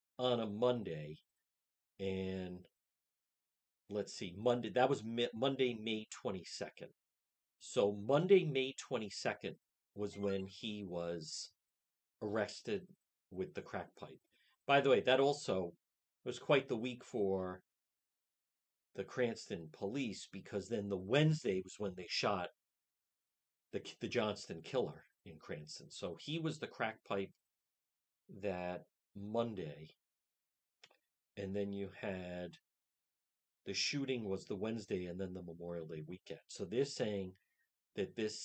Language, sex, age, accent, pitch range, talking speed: English, male, 40-59, American, 90-125 Hz, 125 wpm